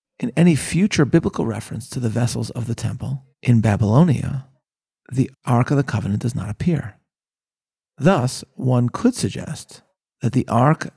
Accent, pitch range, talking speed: American, 115-145 Hz, 155 wpm